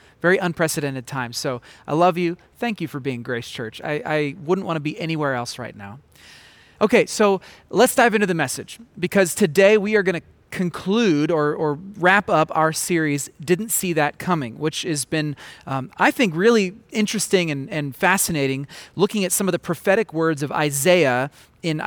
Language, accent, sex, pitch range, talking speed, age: English, American, male, 145-190 Hz, 185 wpm, 30-49